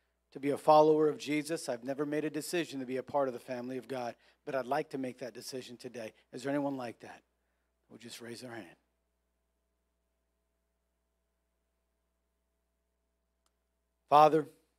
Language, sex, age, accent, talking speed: English, male, 40-59, American, 160 wpm